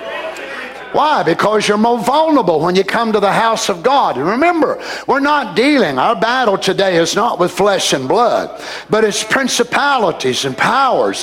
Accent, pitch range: American, 200-240 Hz